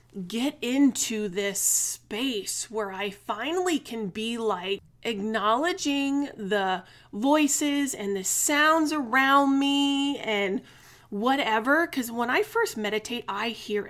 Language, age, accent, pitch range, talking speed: English, 30-49, American, 200-270 Hz, 115 wpm